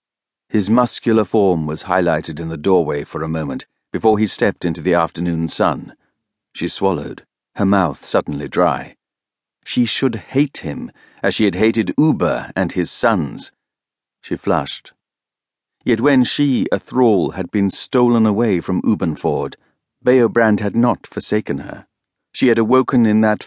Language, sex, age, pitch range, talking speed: English, male, 50-69, 95-125 Hz, 150 wpm